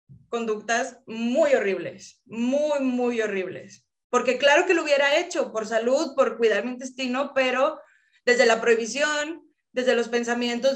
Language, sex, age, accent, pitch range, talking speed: Spanish, female, 20-39, Mexican, 230-270 Hz, 140 wpm